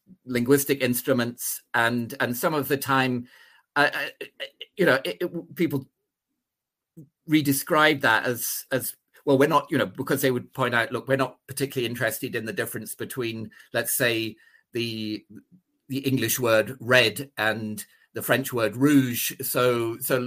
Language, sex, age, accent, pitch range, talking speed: English, male, 40-59, British, 115-150 Hz, 150 wpm